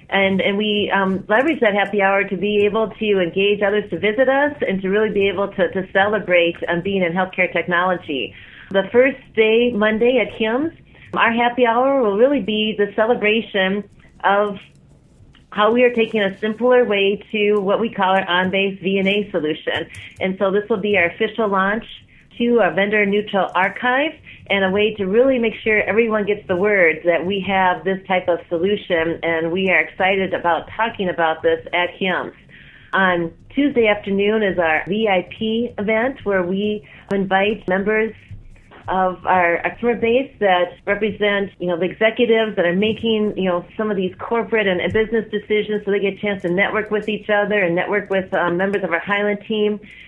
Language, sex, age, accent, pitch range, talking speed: English, female, 30-49, American, 185-215 Hz, 180 wpm